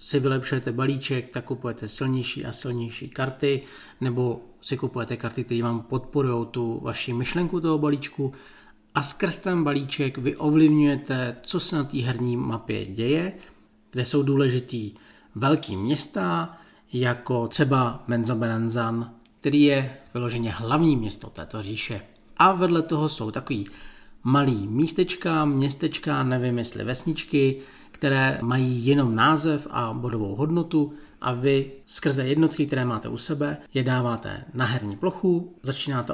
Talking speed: 135 wpm